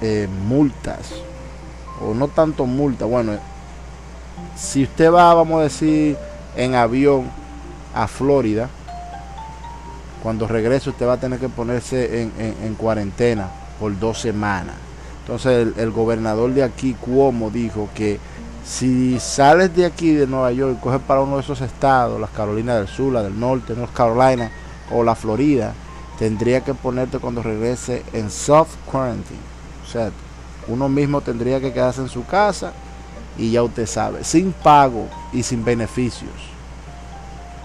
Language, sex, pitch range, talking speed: Spanish, male, 95-130 Hz, 145 wpm